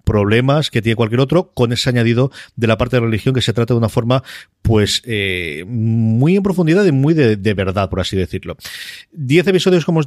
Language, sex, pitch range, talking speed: English, male, 105-125 Hz, 220 wpm